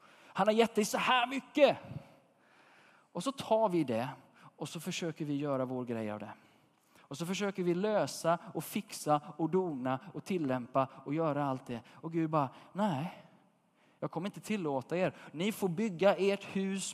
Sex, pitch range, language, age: male, 150-195 Hz, Swedish, 20-39